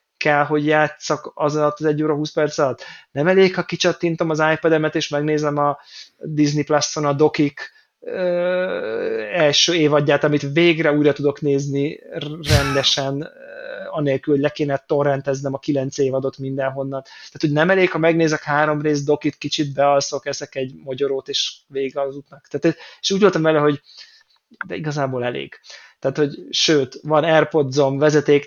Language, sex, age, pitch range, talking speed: Hungarian, male, 20-39, 145-170 Hz, 155 wpm